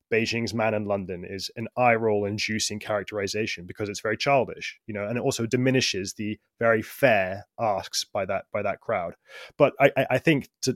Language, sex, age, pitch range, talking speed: English, male, 20-39, 105-125 Hz, 190 wpm